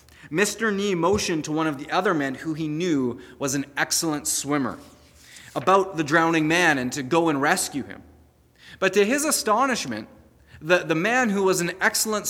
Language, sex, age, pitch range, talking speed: English, male, 30-49, 140-190 Hz, 180 wpm